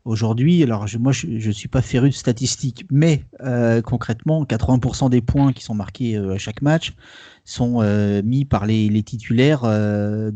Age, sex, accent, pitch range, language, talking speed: 30-49, male, French, 110-135 Hz, French, 185 wpm